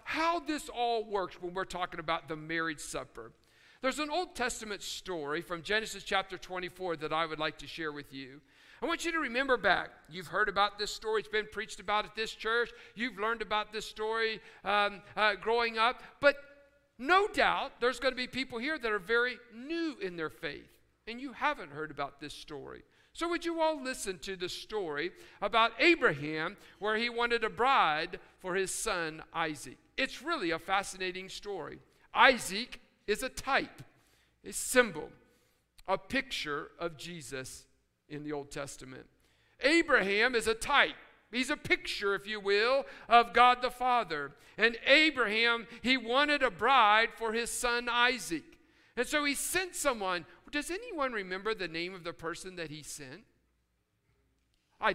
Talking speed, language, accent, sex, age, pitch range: 170 wpm, English, American, male, 60-79, 180-255 Hz